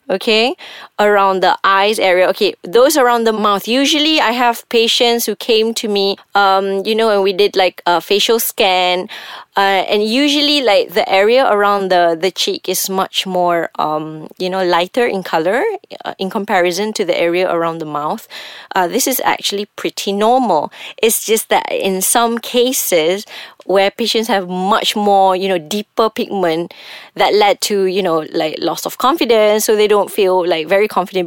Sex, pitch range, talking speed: female, 185-230 Hz, 180 wpm